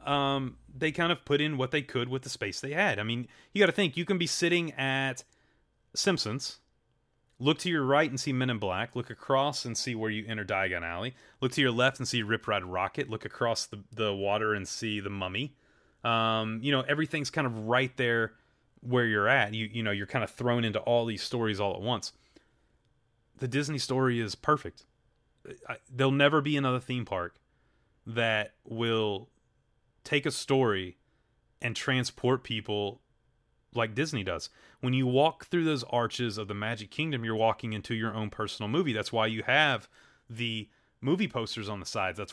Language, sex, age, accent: English, male, 30-49, American